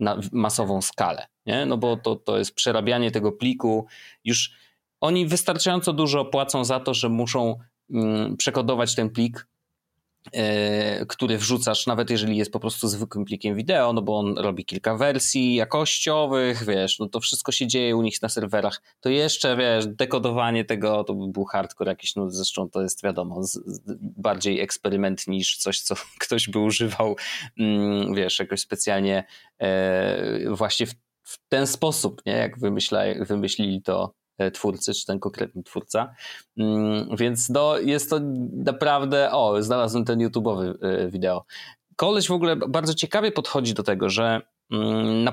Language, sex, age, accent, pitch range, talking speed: Polish, male, 20-39, native, 105-130 Hz, 150 wpm